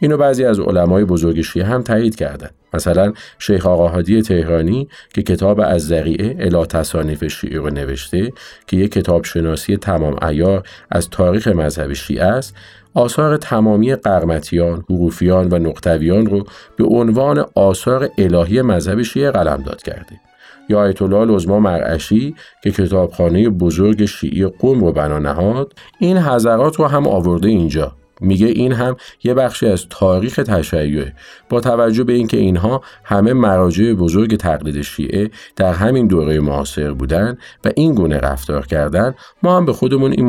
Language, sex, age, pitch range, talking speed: Arabic, male, 50-69, 85-110 Hz, 150 wpm